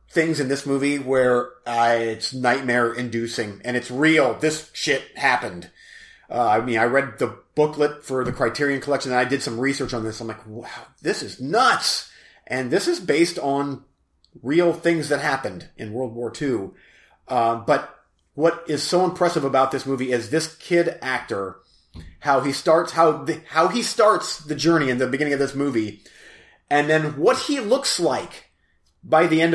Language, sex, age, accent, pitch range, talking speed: English, male, 30-49, American, 125-160 Hz, 180 wpm